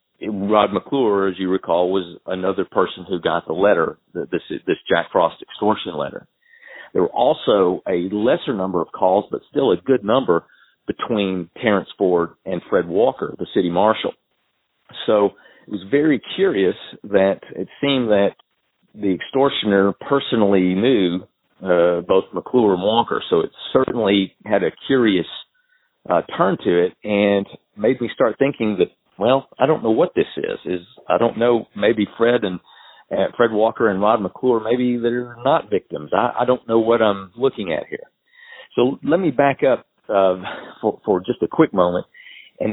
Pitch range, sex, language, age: 100-140 Hz, male, English, 40-59